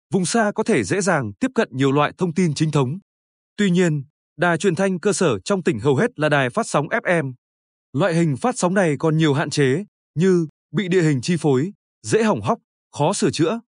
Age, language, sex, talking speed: 20-39, Vietnamese, male, 220 wpm